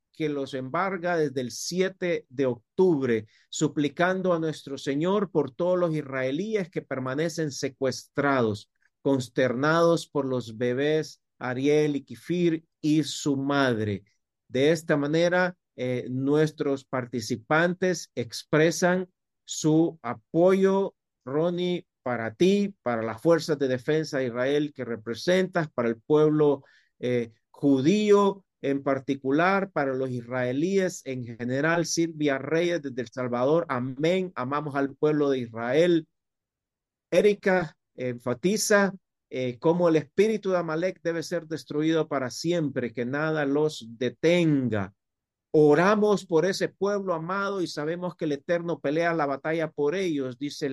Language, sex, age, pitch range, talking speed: Spanish, male, 50-69, 130-170 Hz, 125 wpm